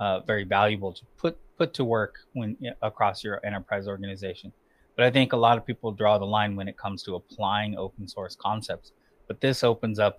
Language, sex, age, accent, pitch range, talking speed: English, male, 20-39, American, 100-120 Hz, 205 wpm